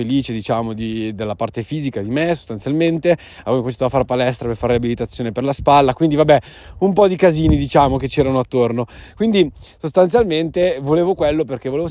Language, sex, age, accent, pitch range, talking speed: Italian, male, 20-39, native, 115-145 Hz, 180 wpm